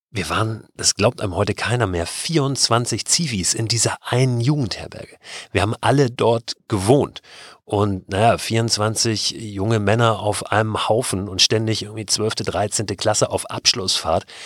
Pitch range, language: 100-125 Hz, German